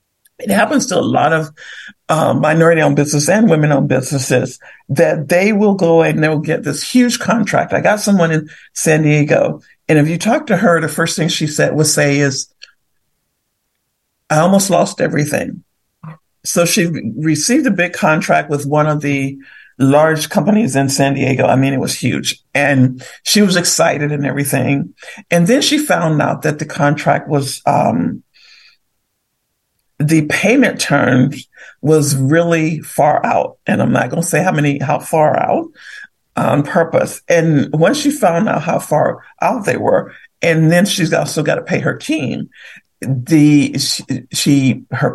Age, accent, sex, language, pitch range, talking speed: 50-69, American, male, English, 145-175 Hz, 165 wpm